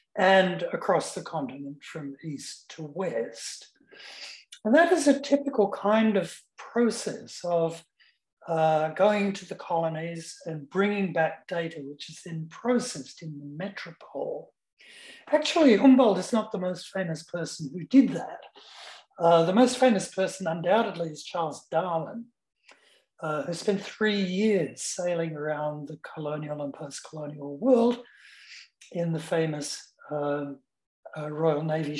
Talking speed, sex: 135 wpm, male